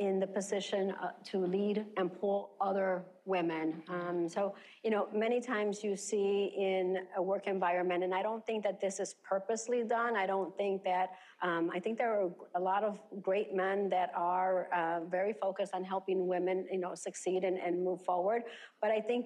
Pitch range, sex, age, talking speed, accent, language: 185-210 Hz, female, 50-69, 195 wpm, American, English